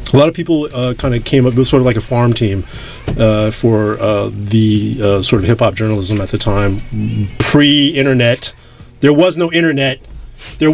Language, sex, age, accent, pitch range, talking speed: English, male, 30-49, American, 115-130 Hz, 190 wpm